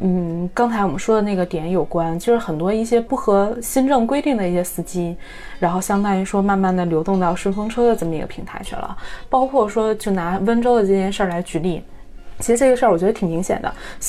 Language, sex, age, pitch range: Chinese, female, 20-39, 180-235 Hz